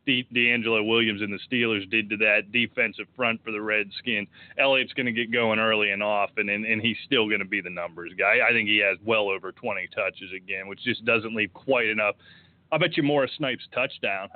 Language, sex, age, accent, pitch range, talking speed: English, male, 30-49, American, 110-135 Hz, 230 wpm